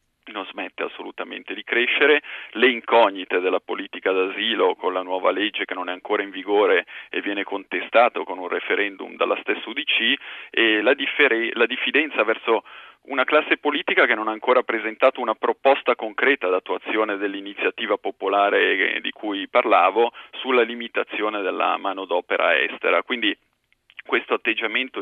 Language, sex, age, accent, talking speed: Italian, male, 40-59, native, 145 wpm